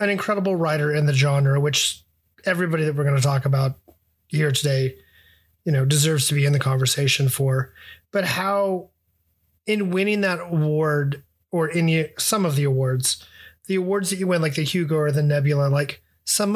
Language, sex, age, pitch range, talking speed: English, male, 30-49, 135-165 Hz, 180 wpm